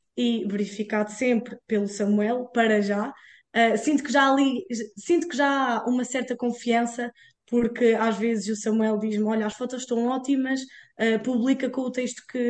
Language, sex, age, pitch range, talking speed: Portuguese, female, 10-29, 215-275 Hz, 175 wpm